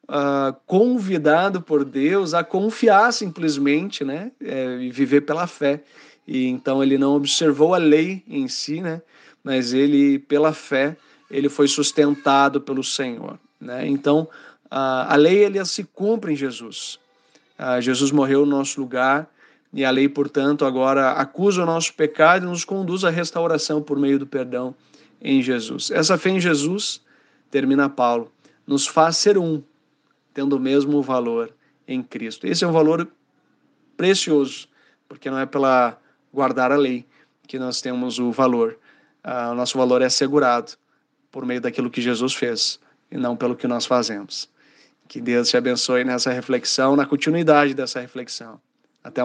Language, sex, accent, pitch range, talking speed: Portuguese, male, Brazilian, 130-155 Hz, 155 wpm